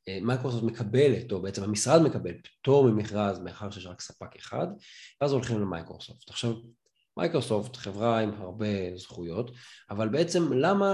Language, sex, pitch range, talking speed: Hebrew, male, 110-155 Hz, 135 wpm